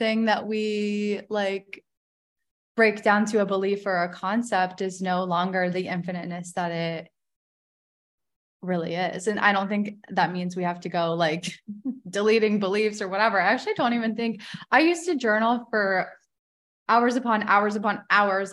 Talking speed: 165 wpm